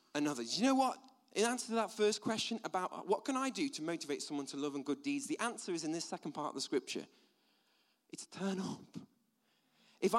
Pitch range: 180-245 Hz